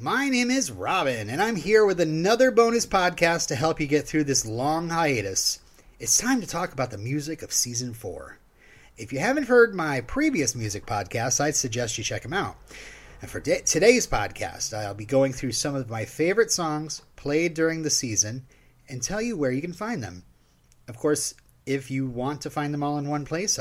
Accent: American